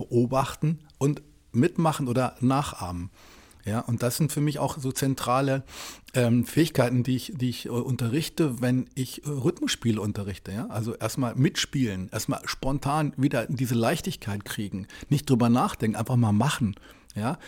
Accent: German